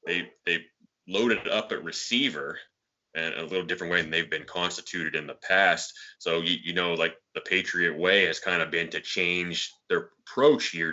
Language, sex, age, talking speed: English, male, 20-39, 190 wpm